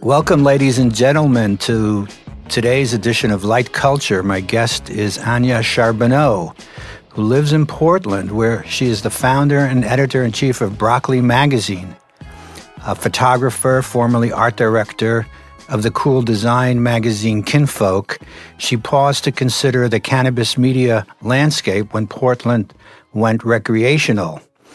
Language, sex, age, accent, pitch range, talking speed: English, male, 60-79, American, 110-130 Hz, 125 wpm